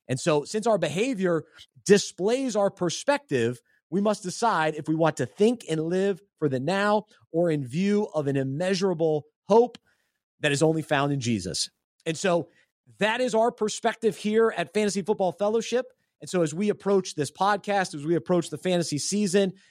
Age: 30-49